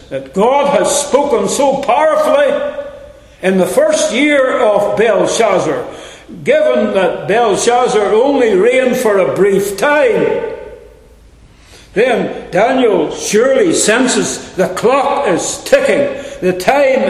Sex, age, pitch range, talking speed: male, 60-79, 205-310 Hz, 110 wpm